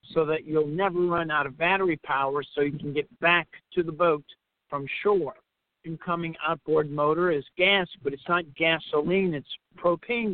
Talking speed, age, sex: 175 wpm, 60-79, male